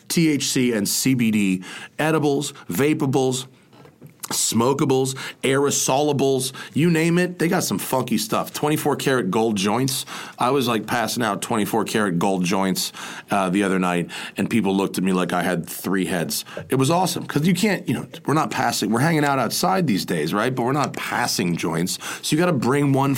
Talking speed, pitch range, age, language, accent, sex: 180 wpm, 115-155 Hz, 30-49, English, American, male